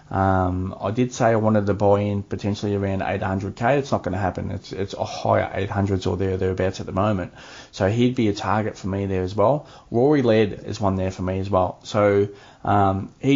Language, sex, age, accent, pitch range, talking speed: English, male, 20-39, Australian, 95-115 Hz, 220 wpm